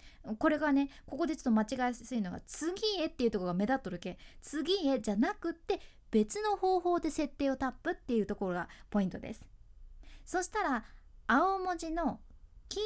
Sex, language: female, Japanese